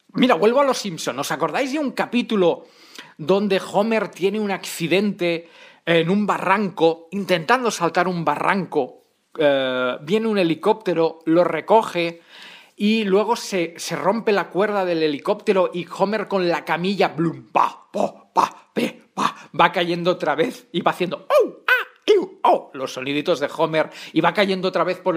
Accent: Spanish